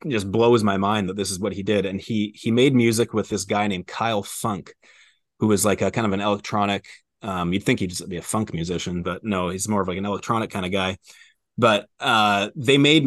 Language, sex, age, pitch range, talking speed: English, male, 30-49, 100-120 Hz, 245 wpm